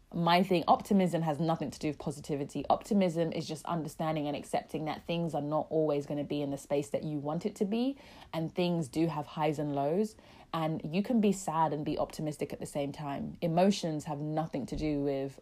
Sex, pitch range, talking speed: female, 145-170 Hz, 220 wpm